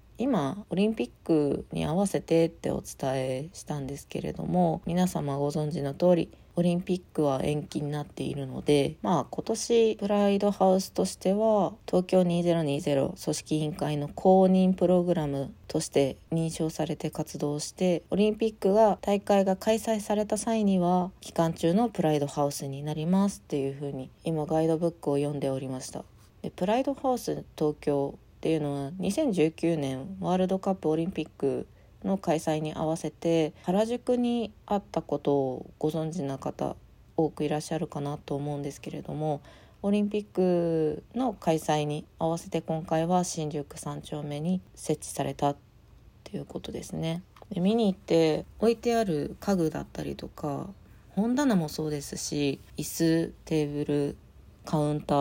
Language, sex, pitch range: Japanese, female, 145-190 Hz